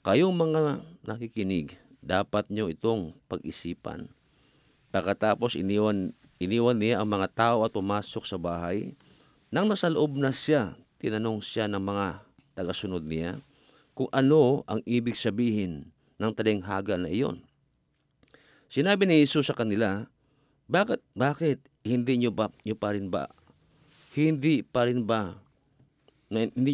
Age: 50-69